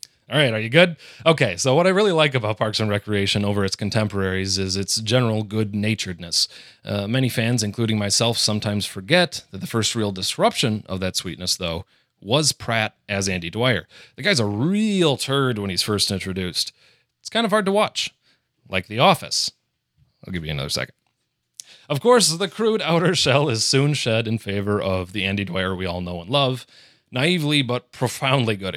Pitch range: 100-140 Hz